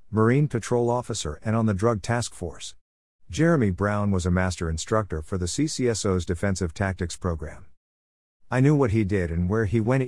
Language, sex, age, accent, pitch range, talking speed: English, male, 50-69, American, 85-115 Hz, 180 wpm